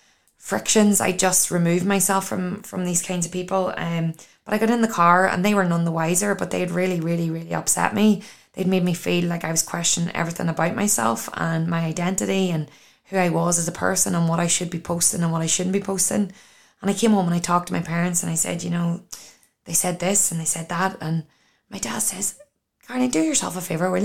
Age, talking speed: 20-39, 240 wpm